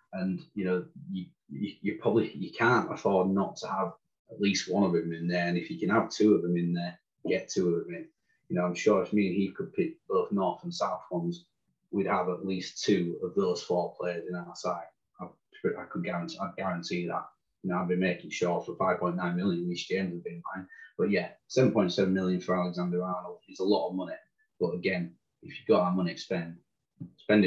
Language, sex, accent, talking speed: English, male, British, 225 wpm